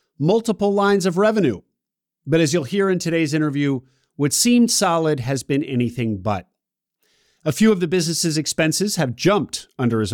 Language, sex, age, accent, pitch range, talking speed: English, male, 50-69, American, 135-190 Hz, 165 wpm